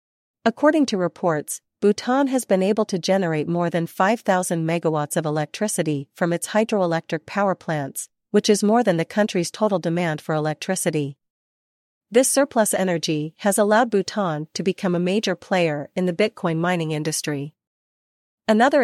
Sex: female